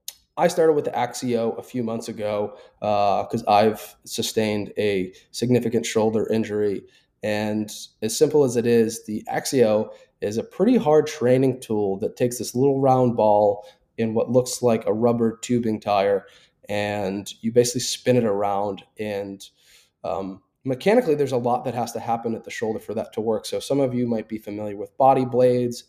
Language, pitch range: English, 105-125 Hz